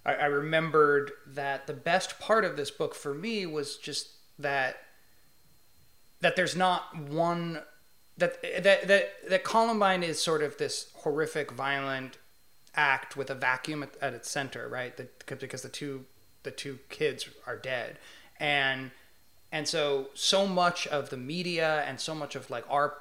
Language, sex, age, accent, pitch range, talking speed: English, male, 30-49, American, 140-175 Hz, 155 wpm